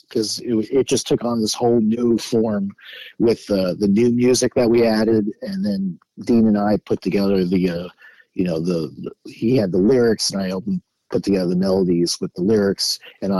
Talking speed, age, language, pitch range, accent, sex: 205 wpm, 40-59, English, 100-130 Hz, American, male